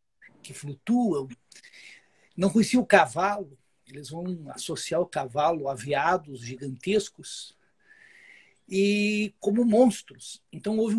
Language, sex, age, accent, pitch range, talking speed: Portuguese, male, 60-79, Brazilian, 160-205 Hz, 100 wpm